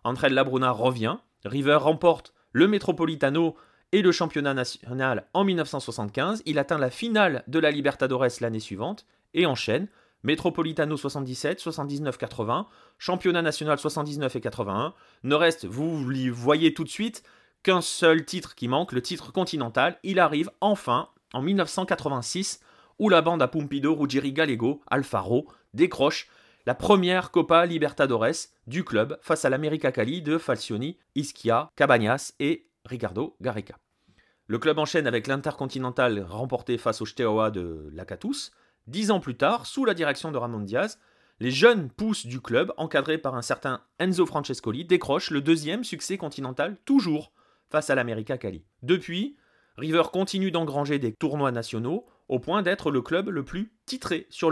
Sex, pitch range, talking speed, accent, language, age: male, 130-175 Hz, 155 wpm, French, French, 30-49